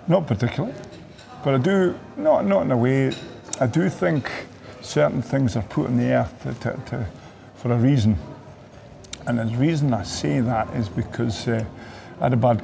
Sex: male